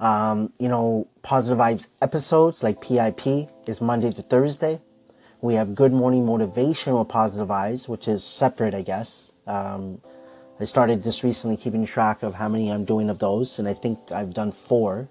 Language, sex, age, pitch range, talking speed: English, male, 30-49, 100-120 Hz, 175 wpm